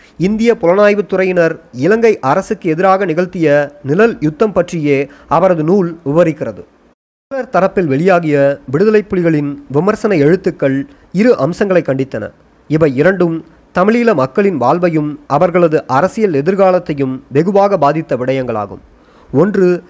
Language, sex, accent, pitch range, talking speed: Tamil, male, native, 145-195 Hz, 105 wpm